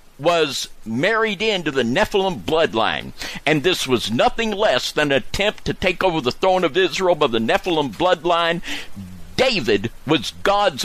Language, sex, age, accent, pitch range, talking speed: English, male, 60-79, American, 140-200 Hz, 155 wpm